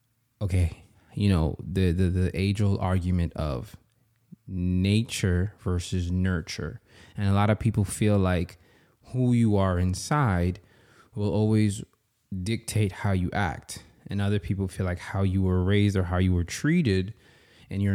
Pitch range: 90-105 Hz